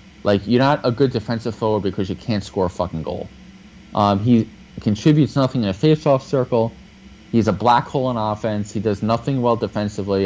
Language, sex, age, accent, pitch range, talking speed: English, male, 20-39, American, 95-120 Hz, 195 wpm